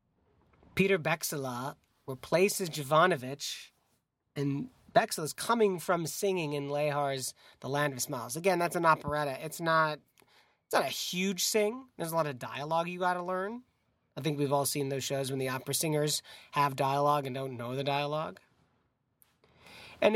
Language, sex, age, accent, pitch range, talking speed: English, male, 30-49, American, 135-170 Hz, 160 wpm